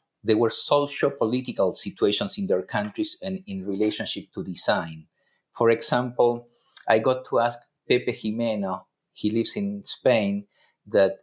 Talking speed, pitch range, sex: 140 wpm, 105-130 Hz, male